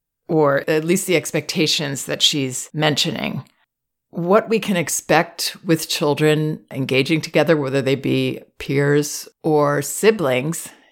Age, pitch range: 40-59, 140-160 Hz